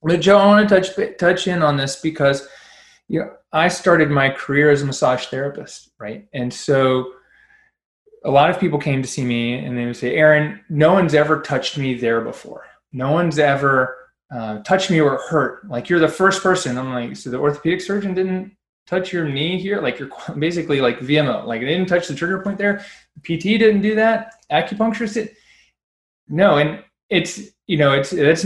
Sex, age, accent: male, 20-39, American